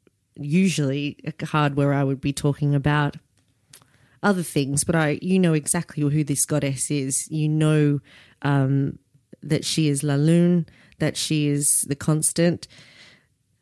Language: English